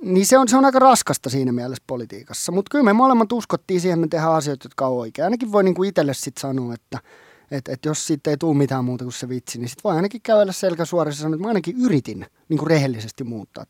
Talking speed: 245 wpm